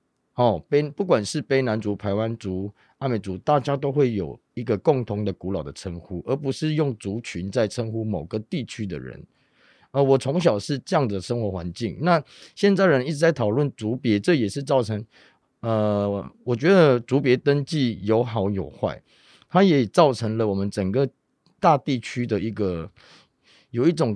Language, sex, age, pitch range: Chinese, male, 30-49, 105-140 Hz